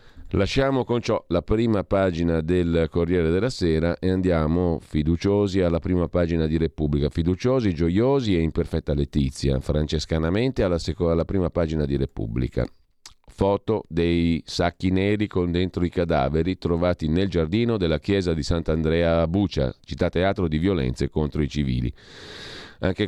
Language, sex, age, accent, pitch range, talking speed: Italian, male, 40-59, native, 80-95 Hz, 145 wpm